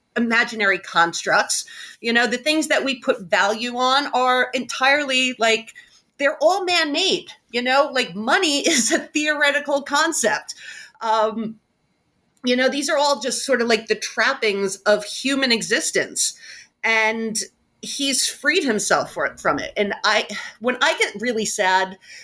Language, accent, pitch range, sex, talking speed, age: English, American, 220-320 Hz, female, 145 wpm, 40-59